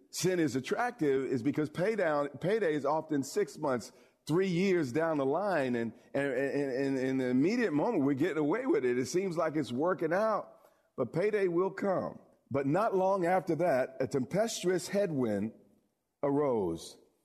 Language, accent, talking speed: English, American, 165 wpm